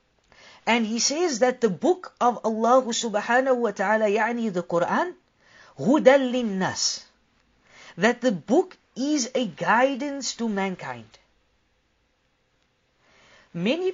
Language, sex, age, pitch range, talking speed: English, female, 50-69, 210-270 Hz, 105 wpm